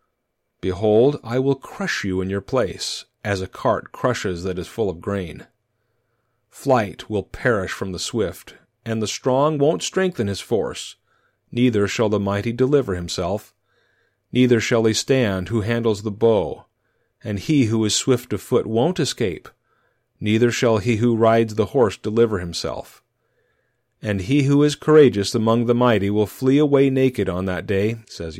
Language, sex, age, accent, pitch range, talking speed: English, male, 40-59, American, 105-135 Hz, 165 wpm